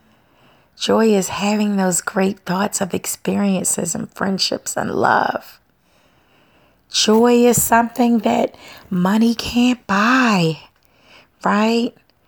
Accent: American